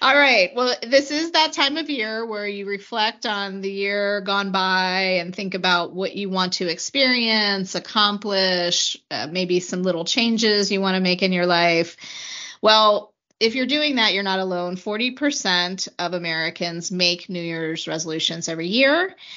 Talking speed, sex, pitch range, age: 175 wpm, female, 180-225 Hz, 30-49